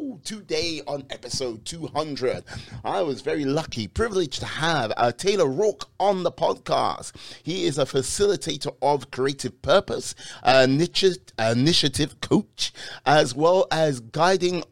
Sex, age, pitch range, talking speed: male, 30-49, 120-160 Hz, 130 wpm